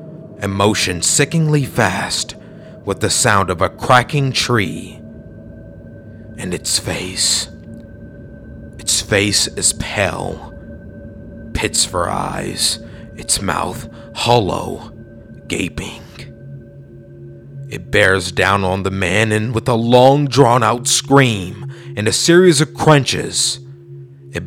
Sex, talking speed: male, 110 wpm